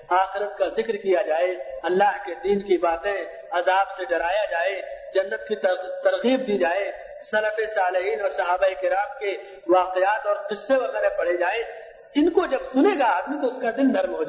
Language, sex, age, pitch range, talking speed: Urdu, male, 60-79, 195-295 Hz, 95 wpm